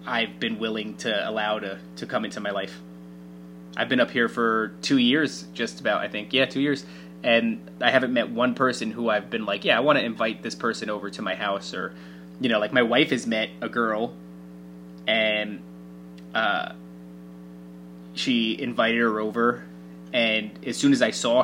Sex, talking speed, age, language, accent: male, 190 wpm, 20-39, English, American